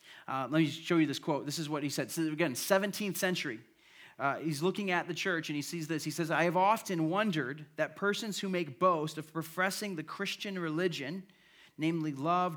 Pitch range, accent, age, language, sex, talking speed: 155-190 Hz, American, 40-59, English, male, 205 wpm